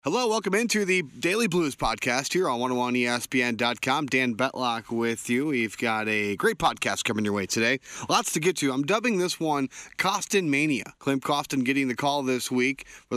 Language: English